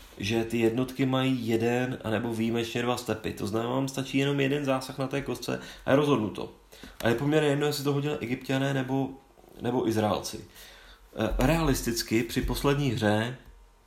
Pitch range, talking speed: 105-130 Hz, 165 wpm